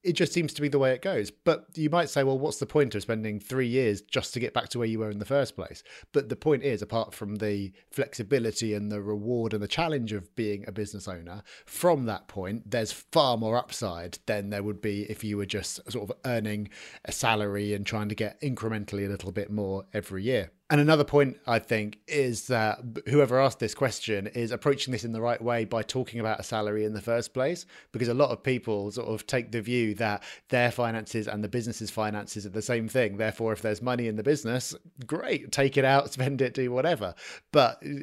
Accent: British